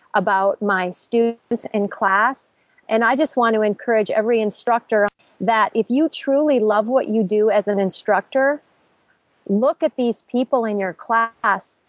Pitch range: 210-260 Hz